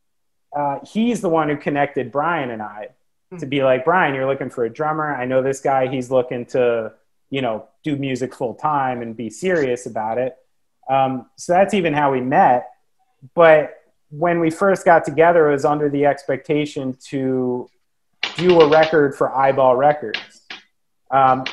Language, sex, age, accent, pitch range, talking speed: English, male, 30-49, American, 130-160 Hz, 175 wpm